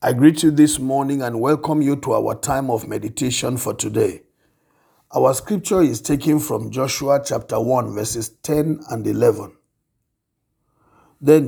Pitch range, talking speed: 125-160 Hz, 145 wpm